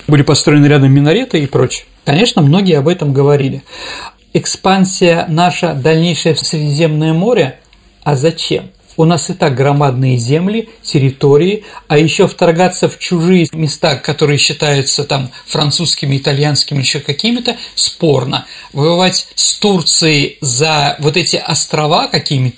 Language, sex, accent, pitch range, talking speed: Russian, male, native, 145-175 Hz, 125 wpm